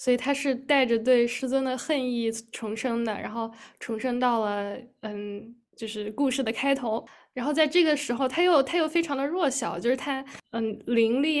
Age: 10-29